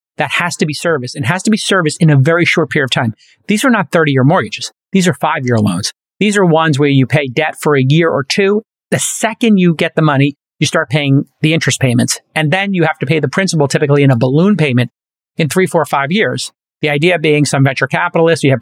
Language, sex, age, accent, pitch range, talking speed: English, male, 40-59, American, 140-180 Hz, 245 wpm